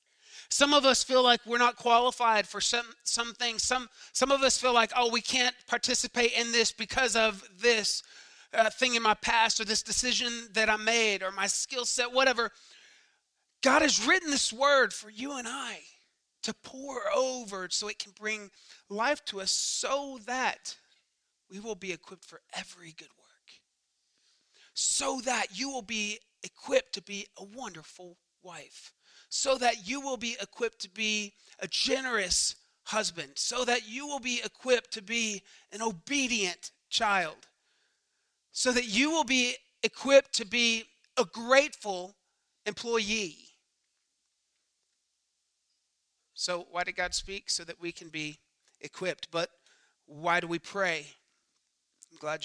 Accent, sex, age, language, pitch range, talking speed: American, male, 30-49, English, 195-250 Hz, 155 wpm